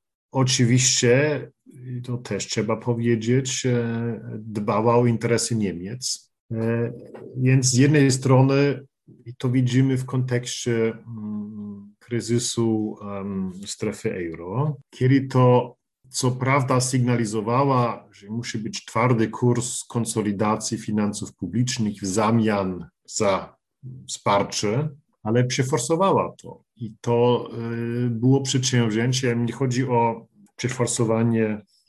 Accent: native